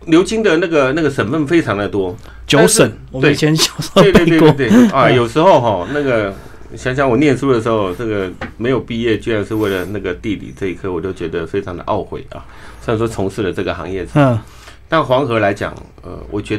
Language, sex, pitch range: Chinese, male, 100-135 Hz